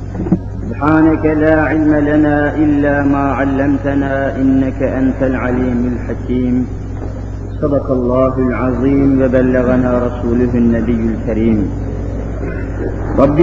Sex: male